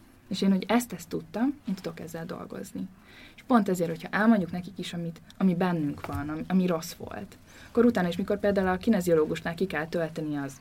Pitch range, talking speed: 160-220 Hz, 205 wpm